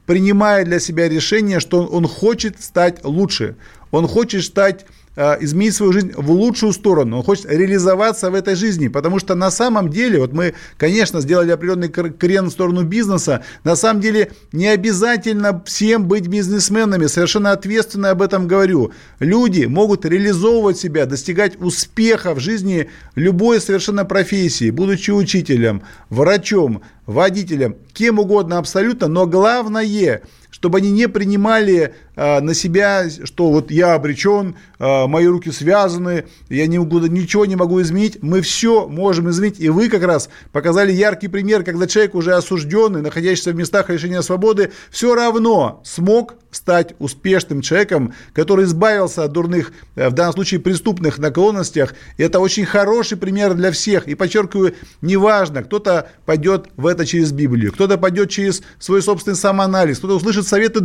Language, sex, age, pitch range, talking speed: Russian, male, 40-59, 170-205 Hz, 145 wpm